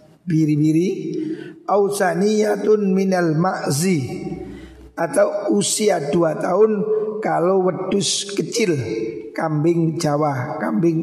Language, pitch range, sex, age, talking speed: Indonesian, 165-200 Hz, male, 50-69, 80 wpm